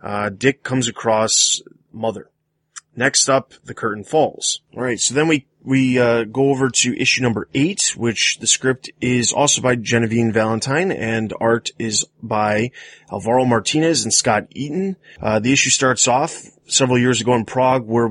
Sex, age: male, 20-39